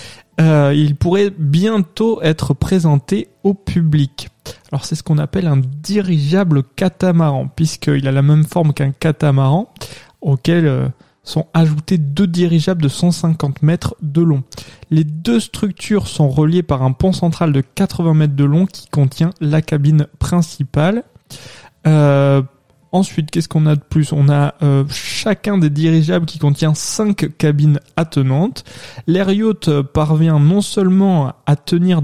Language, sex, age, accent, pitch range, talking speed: French, male, 20-39, French, 145-175 Hz, 145 wpm